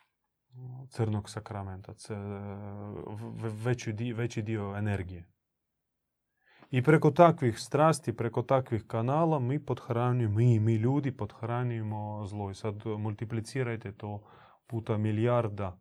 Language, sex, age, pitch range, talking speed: Croatian, male, 30-49, 105-125 Hz, 105 wpm